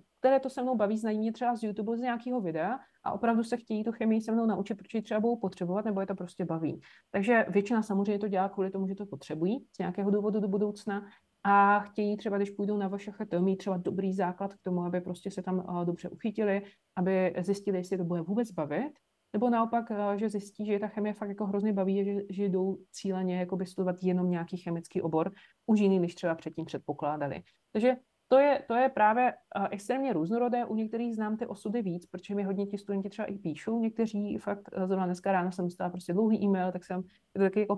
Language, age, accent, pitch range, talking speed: Czech, 30-49, native, 185-215 Hz, 220 wpm